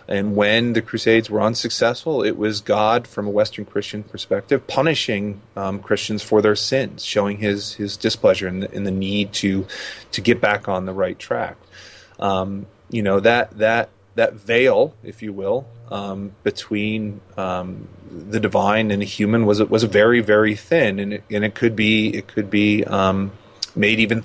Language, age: English, 30-49